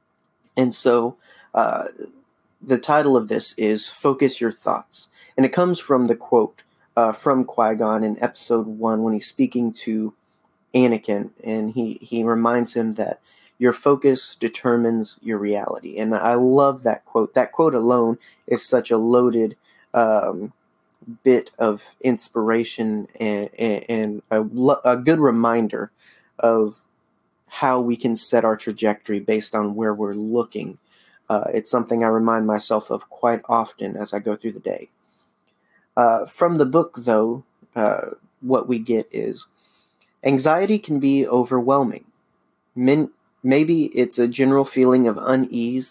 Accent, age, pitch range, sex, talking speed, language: American, 30-49, 110-130 Hz, male, 140 wpm, English